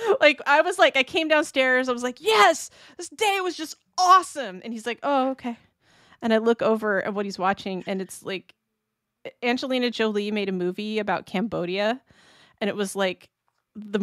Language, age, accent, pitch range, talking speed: English, 30-49, American, 195-255 Hz, 190 wpm